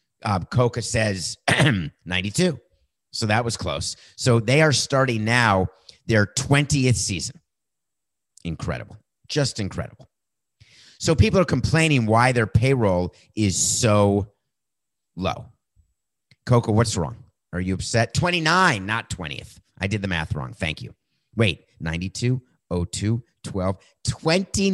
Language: English